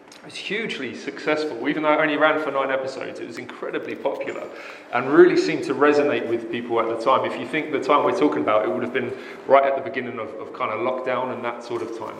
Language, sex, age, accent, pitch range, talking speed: English, male, 30-49, British, 145-235 Hz, 255 wpm